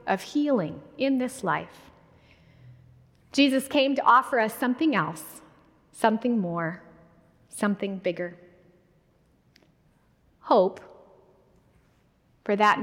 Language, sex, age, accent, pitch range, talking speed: English, female, 30-49, American, 185-260 Hz, 90 wpm